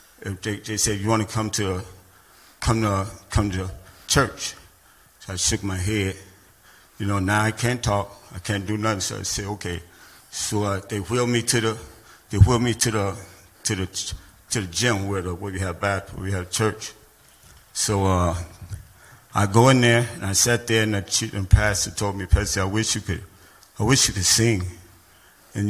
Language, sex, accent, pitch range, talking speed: English, male, American, 95-110 Hz, 205 wpm